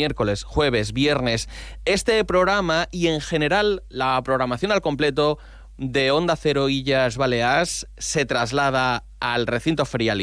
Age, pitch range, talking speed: 30-49, 120-150 Hz, 130 wpm